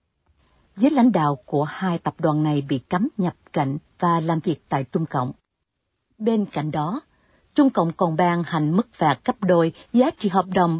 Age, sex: 60-79, female